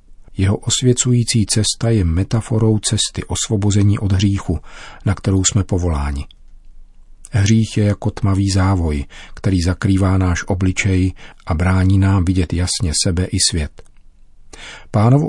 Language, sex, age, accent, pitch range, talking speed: Czech, male, 40-59, native, 90-110 Hz, 120 wpm